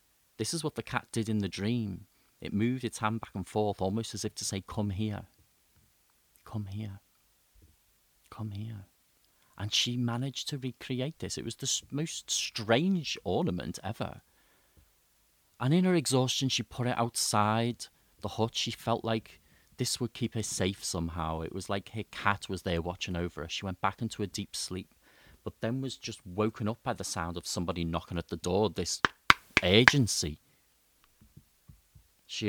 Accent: British